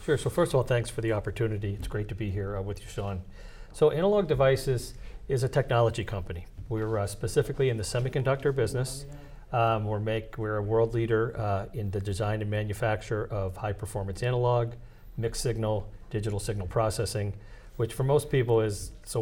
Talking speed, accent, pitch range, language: 185 wpm, American, 105-120 Hz, English